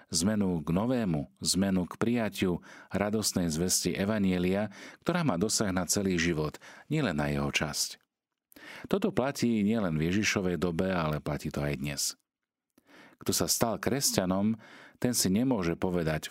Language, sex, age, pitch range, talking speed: Slovak, male, 40-59, 80-105 Hz, 140 wpm